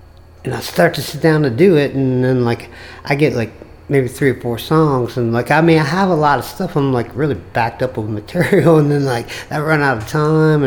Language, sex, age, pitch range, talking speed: English, male, 50-69, 105-150 Hz, 255 wpm